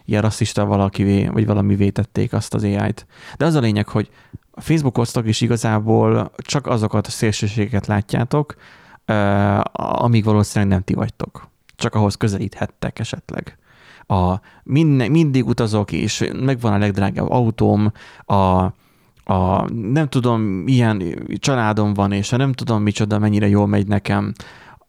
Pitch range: 100-120 Hz